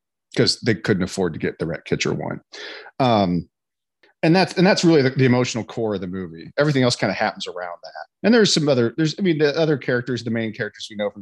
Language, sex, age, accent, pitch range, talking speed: English, male, 40-59, American, 105-130 Hz, 245 wpm